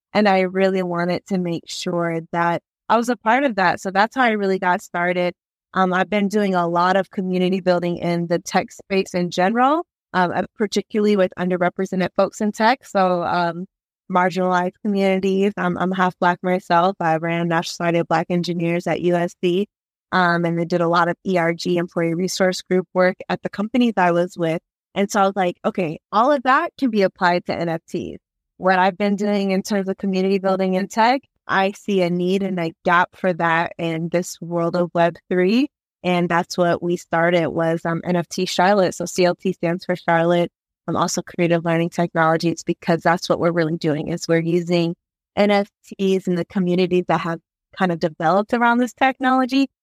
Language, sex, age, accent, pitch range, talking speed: English, female, 20-39, American, 170-195 Hz, 190 wpm